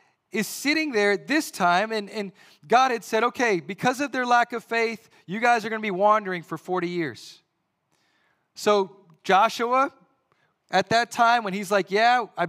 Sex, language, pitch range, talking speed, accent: male, English, 175-235 Hz, 180 wpm, American